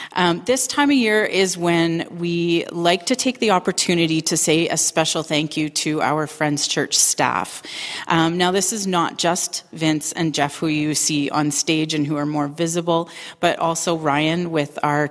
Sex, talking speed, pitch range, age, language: female, 190 wpm, 155-180 Hz, 30-49, English